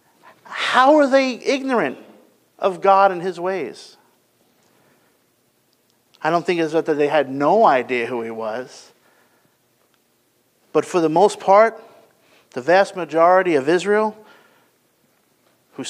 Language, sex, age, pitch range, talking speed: English, male, 50-69, 135-220 Hz, 120 wpm